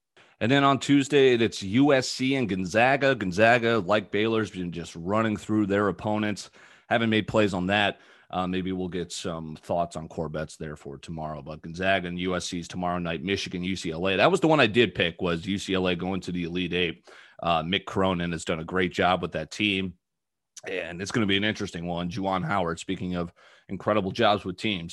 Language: English